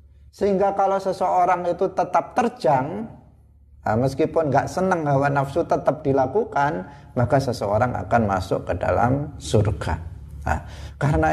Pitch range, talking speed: 105-155 Hz, 115 wpm